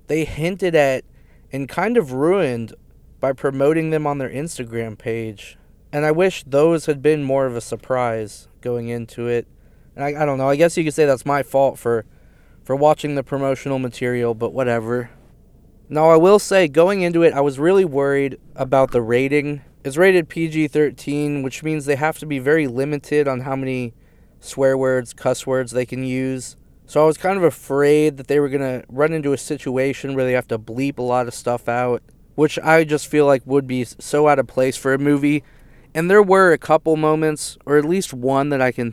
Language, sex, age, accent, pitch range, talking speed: English, male, 20-39, American, 125-150 Hz, 210 wpm